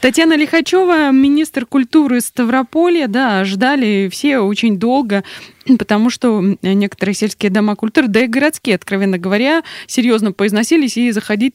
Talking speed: 130 wpm